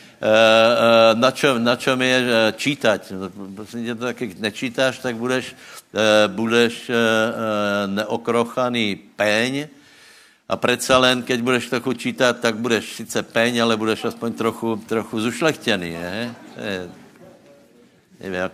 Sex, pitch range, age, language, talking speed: male, 105-120 Hz, 60-79, Slovak, 105 wpm